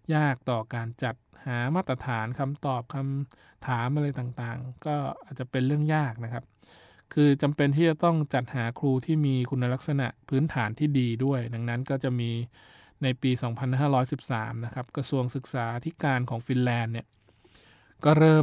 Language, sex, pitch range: Thai, male, 115-135 Hz